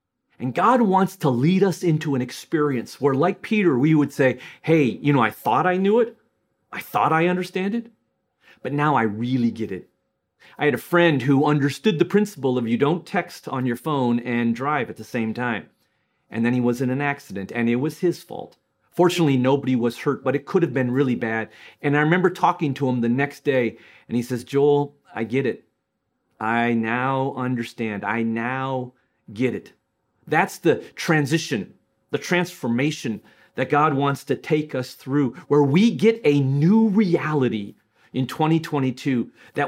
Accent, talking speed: American, 185 wpm